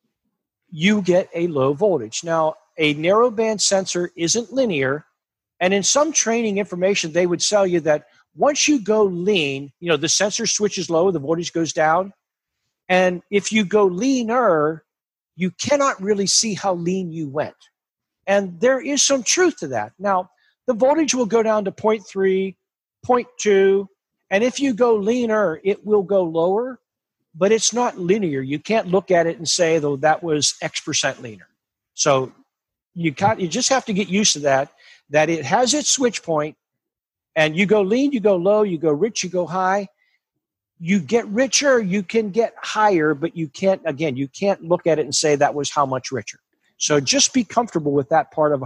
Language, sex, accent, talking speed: English, male, American, 185 wpm